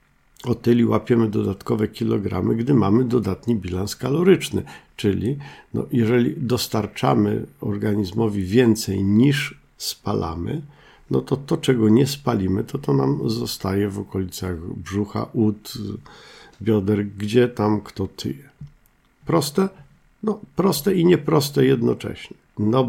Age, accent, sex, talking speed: 50-69, native, male, 115 wpm